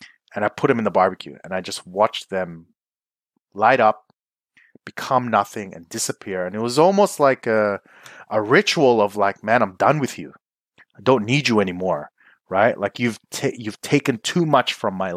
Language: English